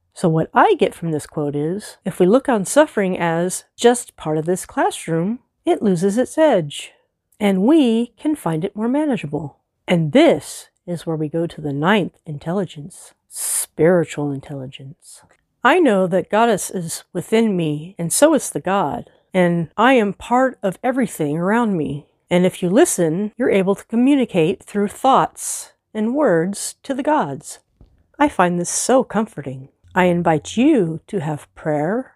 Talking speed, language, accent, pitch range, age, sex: 165 wpm, English, American, 155-230 Hz, 40-59, female